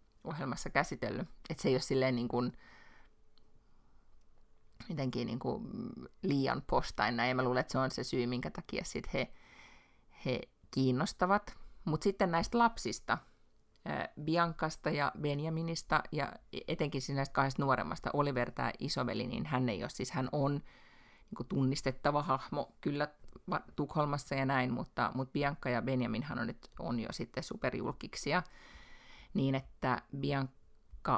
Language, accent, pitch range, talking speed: Finnish, native, 130-155 Hz, 140 wpm